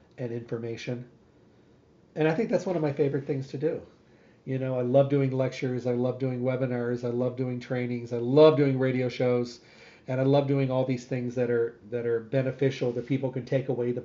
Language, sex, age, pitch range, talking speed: English, male, 40-59, 130-155 Hz, 215 wpm